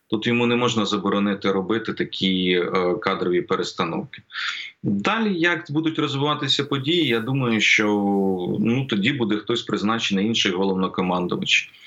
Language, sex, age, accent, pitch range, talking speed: Ukrainian, male, 30-49, native, 100-120 Hz, 120 wpm